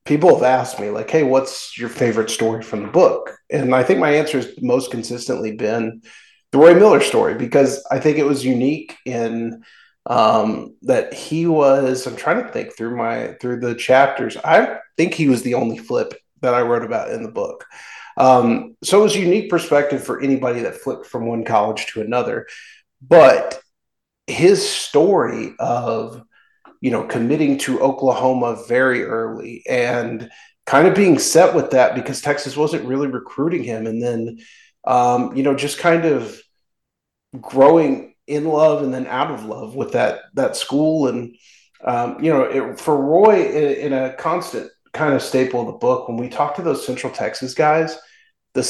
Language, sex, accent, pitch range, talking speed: English, male, American, 120-155 Hz, 180 wpm